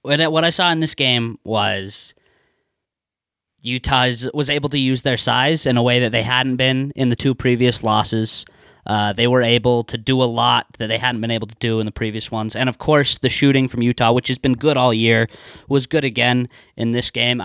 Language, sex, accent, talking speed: English, male, American, 220 wpm